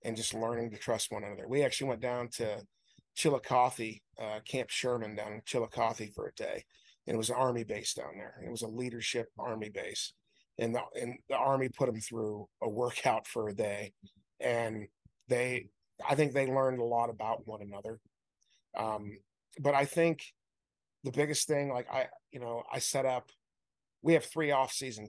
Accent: American